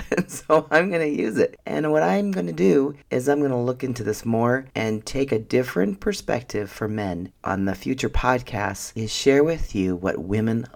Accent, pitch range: American, 105-135 Hz